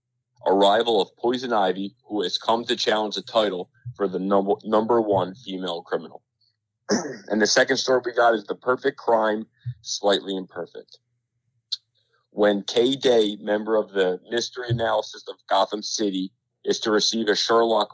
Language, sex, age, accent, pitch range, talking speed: English, male, 30-49, American, 100-120 Hz, 150 wpm